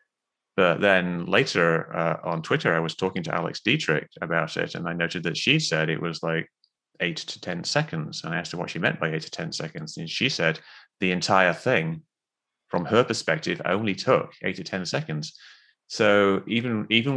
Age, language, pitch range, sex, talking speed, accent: 30-49, English, 90-115 Hz, male, 200 wpm, British